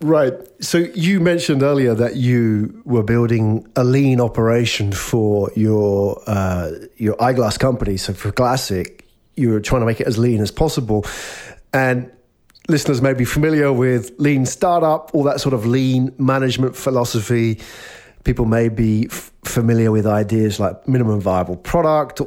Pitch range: 110-135 Hz